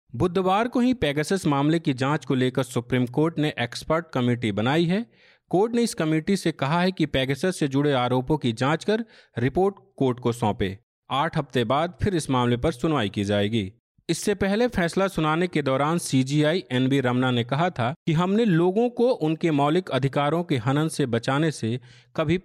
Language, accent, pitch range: Hindi, native, 125-170 Hz